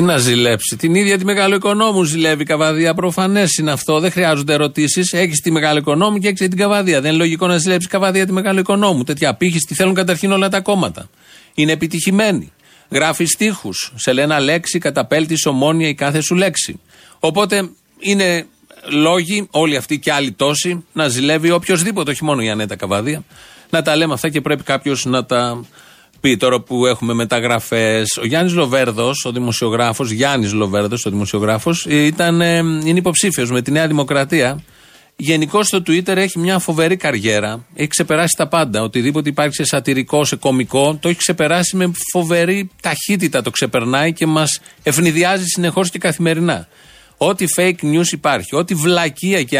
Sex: male